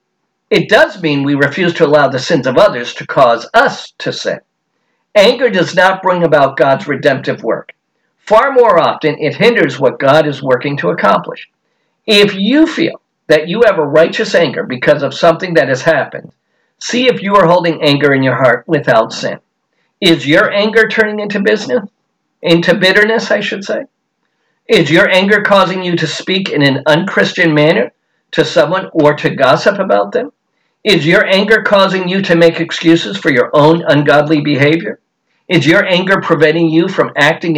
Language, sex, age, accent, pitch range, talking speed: English, male, 50-69, American, 150-195 Hz, 175 wpm